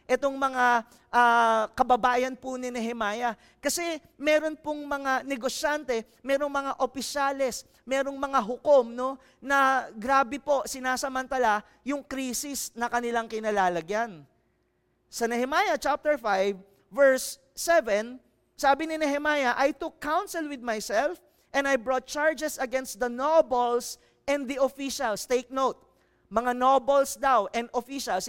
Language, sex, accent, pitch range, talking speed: English, male, Filipino, 245-285 Hz, 125 wpm